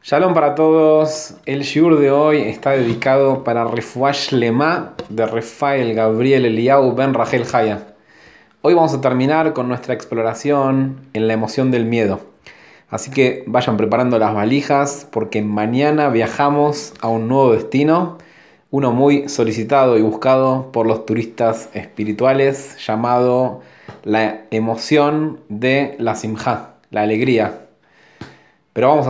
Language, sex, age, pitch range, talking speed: Spanish, male, 20-39, 115-140 Hz, 130 wpm